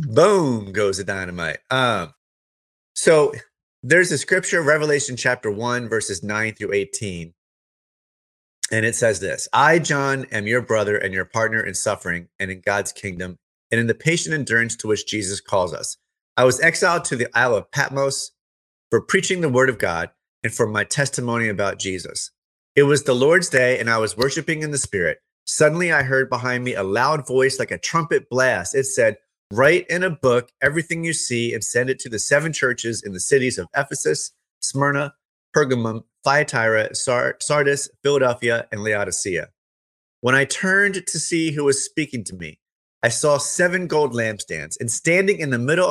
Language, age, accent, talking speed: English, 30-49, American, 180 wpm